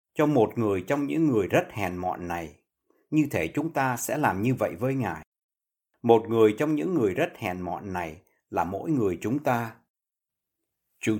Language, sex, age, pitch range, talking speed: Vietnamese, male, 60-79, 110-155 Hz, 190 wpm